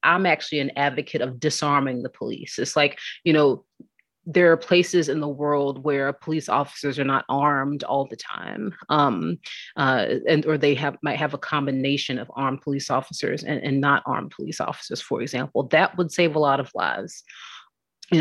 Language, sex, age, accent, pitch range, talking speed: English, female, 30-49, American, 140-175 Hz, 190 wpm